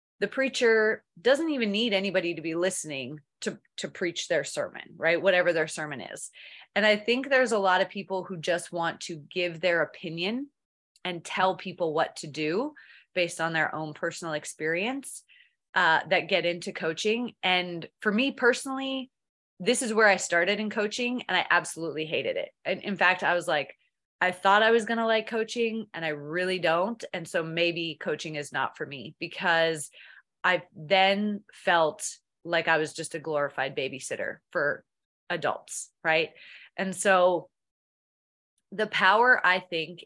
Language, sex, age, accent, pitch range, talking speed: English, female, 20-39, American, 165-210 Hz, 170 wpm